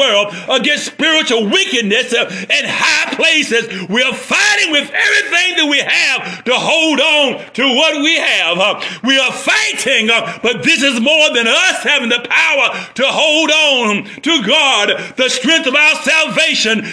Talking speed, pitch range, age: 155 wpm, 255-320 Hz, 50-69